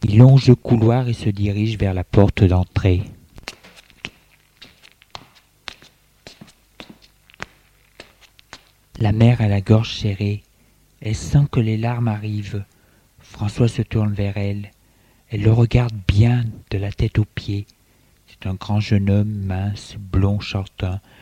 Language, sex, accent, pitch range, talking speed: French, male, French, 105-125 Hz, 125 wpm